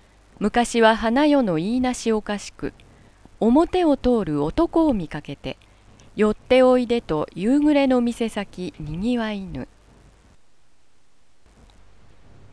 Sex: female